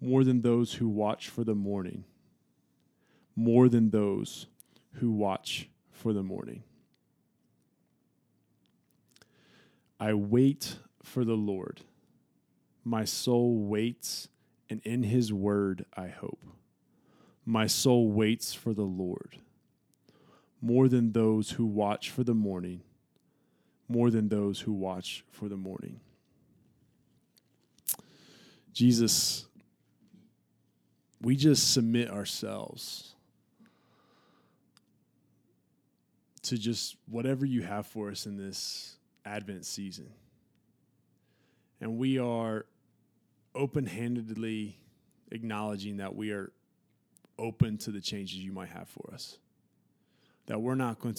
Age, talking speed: 20-39, 105 wpm